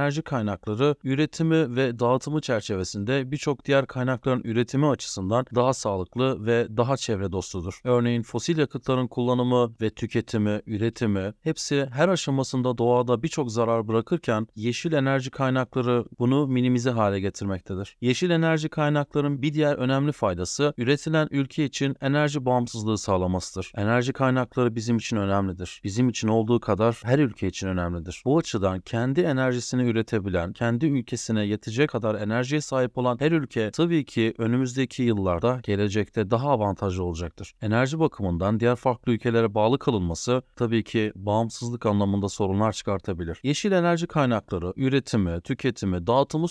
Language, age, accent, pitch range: Turkish, 40-59, native, 110-140 Hz